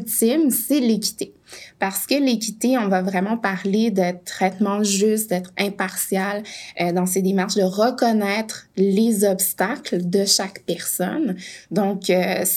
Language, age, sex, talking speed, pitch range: French, 20-39, female, 120 wpm, 185-230 Hz